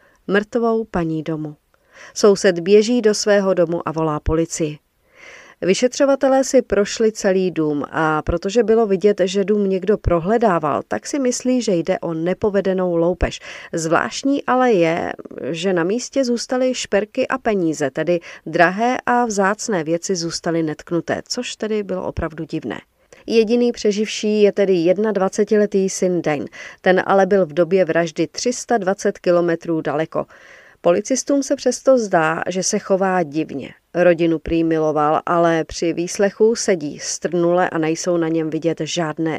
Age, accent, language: 40-59, native, Czech